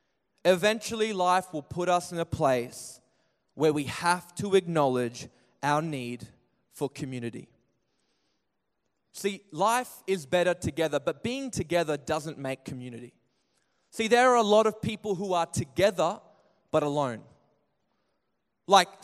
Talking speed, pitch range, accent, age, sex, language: 130 wpm, 165-235 Hz, Australian, 20-39, male, English